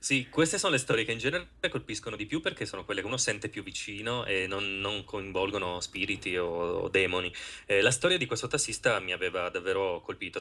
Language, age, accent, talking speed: Italian, 30-49, native, 215 wpm